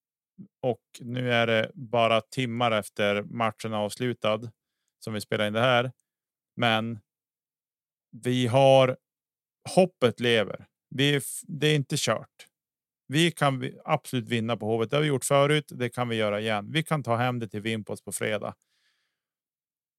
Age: 30-49